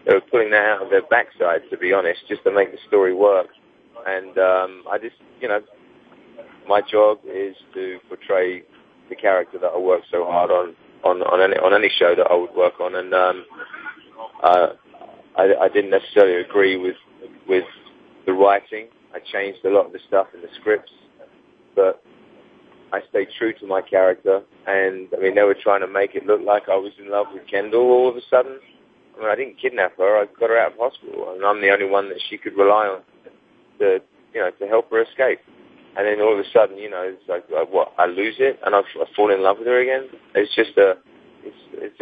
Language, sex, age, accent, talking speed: English, male, 30-49, British, 220 wpm